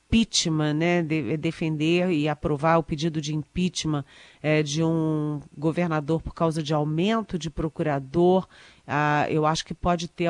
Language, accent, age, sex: Portuguese, Brazilian, 40-59, female